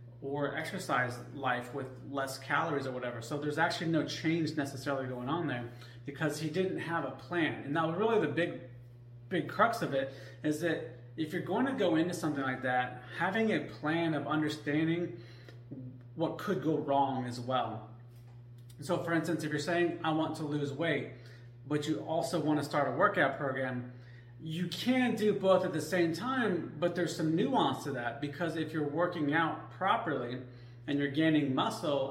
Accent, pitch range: American, 130-160 Hz